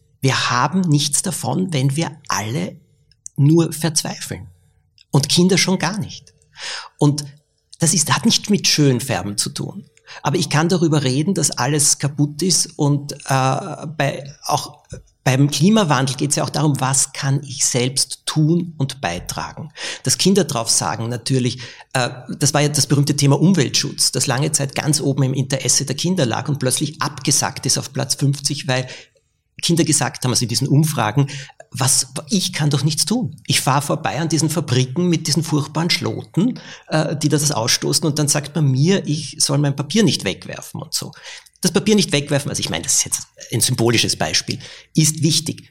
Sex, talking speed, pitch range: male, 175 wpm, 130-160 Hz